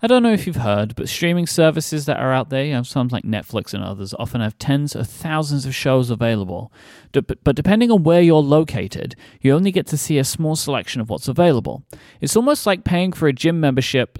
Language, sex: English, male